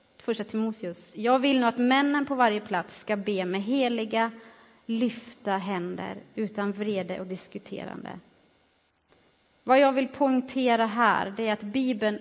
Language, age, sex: Swedish, 30-49, female